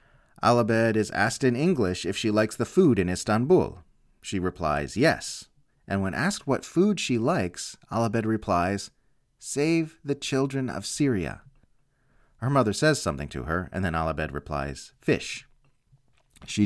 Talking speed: 150 wpm